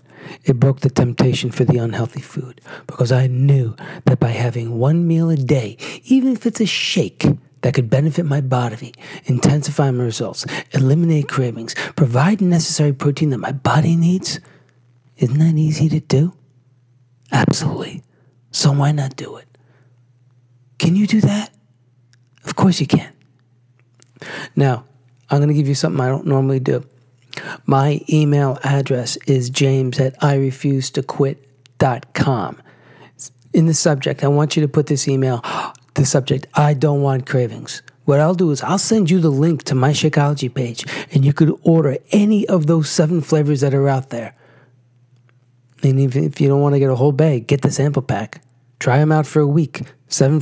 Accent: American